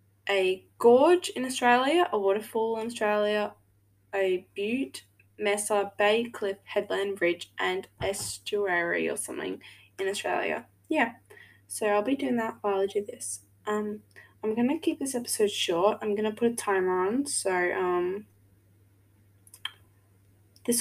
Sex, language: female, English